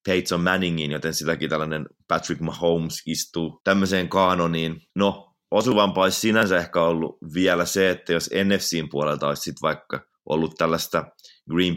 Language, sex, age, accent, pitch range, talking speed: Finnish, male, 30-49, native, 80-90 Hz, 145 wpm